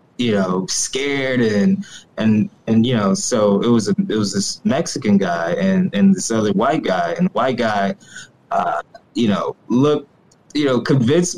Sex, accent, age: male, American, 20-39